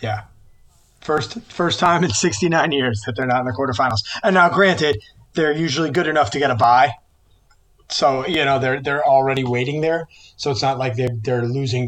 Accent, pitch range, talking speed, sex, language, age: American, 115-140 Hz, 200 wpm, male, English, 20-39